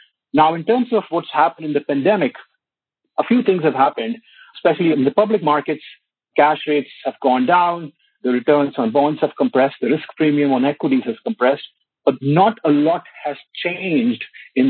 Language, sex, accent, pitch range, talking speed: English, male, Indian, 135-165 Hz, 180 wpm